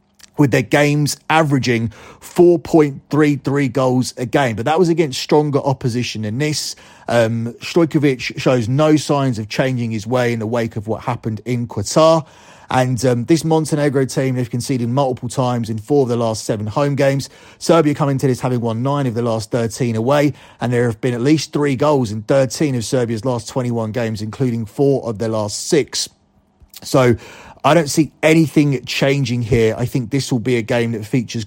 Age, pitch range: 30-49, 115-145 Hz